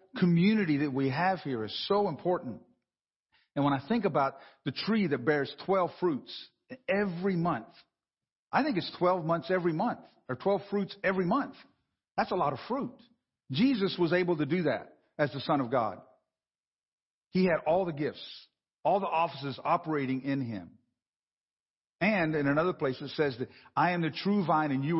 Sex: male